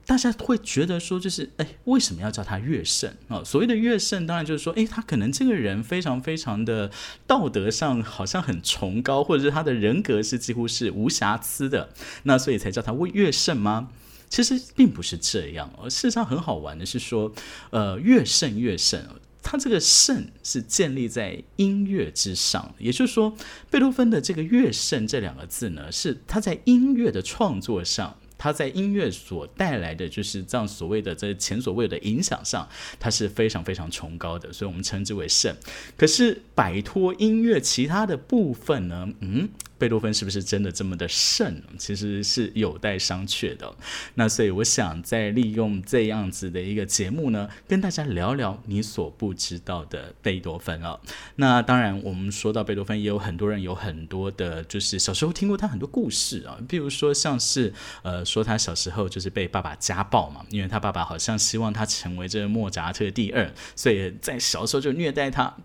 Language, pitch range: Chinese, 100-155 Hz